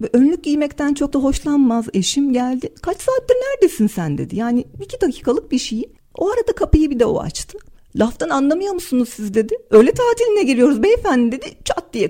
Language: Turkish